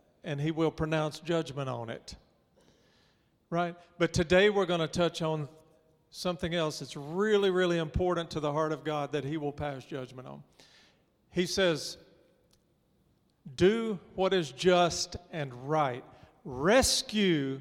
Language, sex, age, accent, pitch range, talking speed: English, male, 50-69, American, 155-200 Hz, 140 wpm